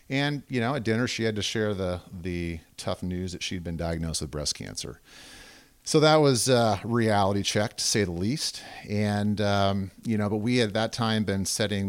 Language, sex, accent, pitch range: English, male, American, 80-100 Hz